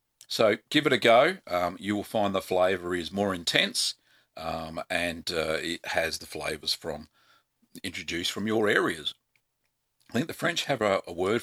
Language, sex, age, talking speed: English, male, 50-69, 180 wpm